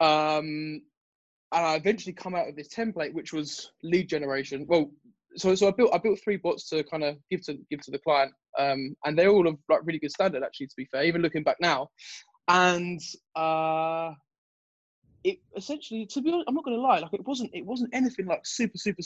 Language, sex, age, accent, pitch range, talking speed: English, male, 20-39, British, 145-180 Hz, 215 wpm